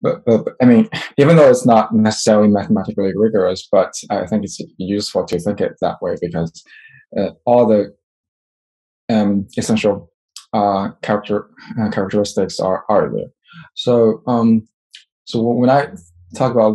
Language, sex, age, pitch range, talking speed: English, male, 10-29, 105-125 Hz, 150 wpm